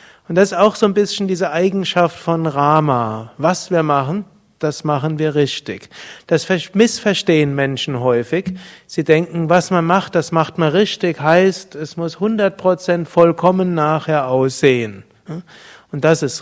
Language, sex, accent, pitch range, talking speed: German, male, German, 140-175 Hz, 155 wpm